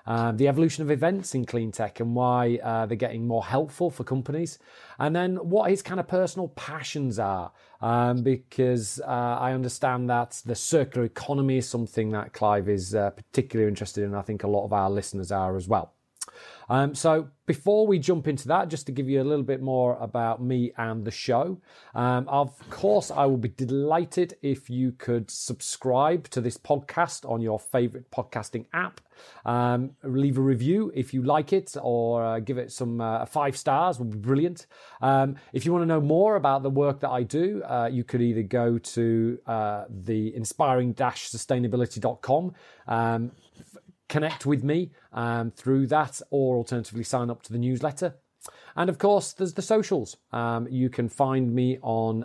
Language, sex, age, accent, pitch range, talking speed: English, male, 40-59, British, 115-145 Hz, 185 wpm